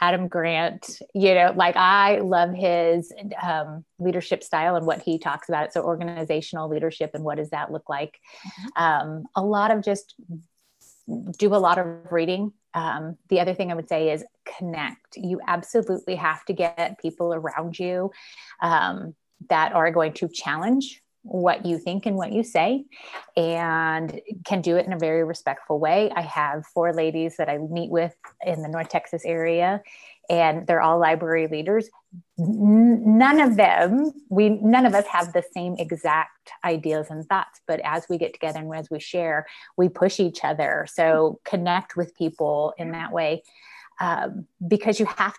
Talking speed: 170 wpm